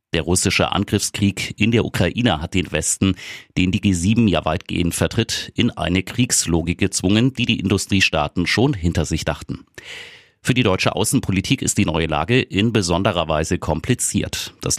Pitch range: 85-105 Hz